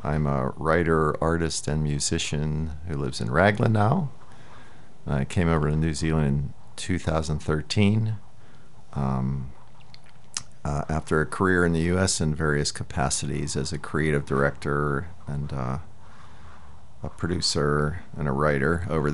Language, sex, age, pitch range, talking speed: English, male, 50-69, 70-85 Hz, 130 wpm